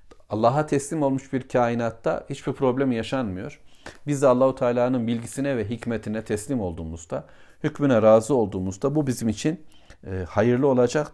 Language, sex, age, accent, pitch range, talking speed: Turkish, male, 40-59, native, 100-130 Hz, 135 wpm